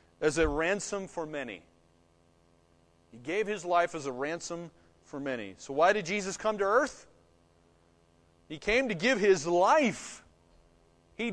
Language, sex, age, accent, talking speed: English, male, 30-49, American, 150 wpm